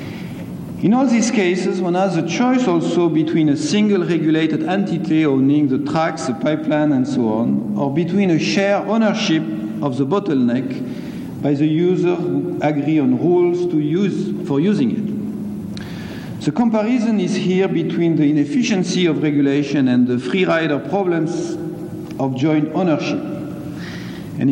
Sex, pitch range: male, 150-195 Hz